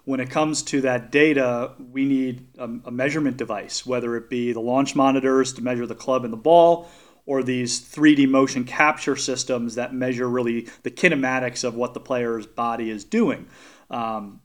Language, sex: English, male